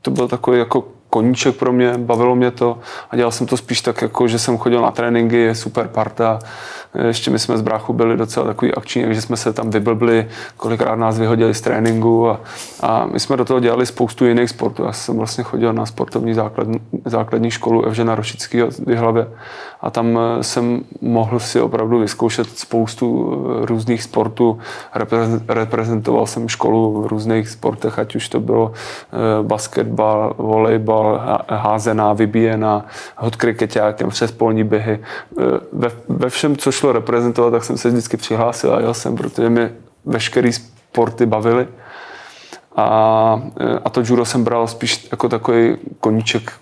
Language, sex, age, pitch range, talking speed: Czech, male, 20-39, 110-120 Hz, 160 wpm